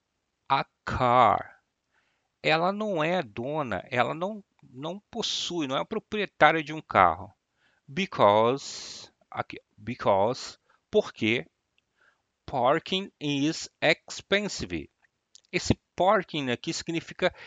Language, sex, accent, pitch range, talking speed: Portuguese, male, Brazilian, 130-180 Hz, 95 wpm